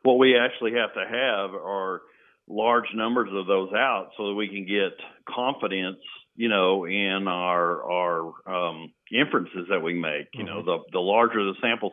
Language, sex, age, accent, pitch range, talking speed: English, male, 50-69, American, 90-105 Hz, 175 wpm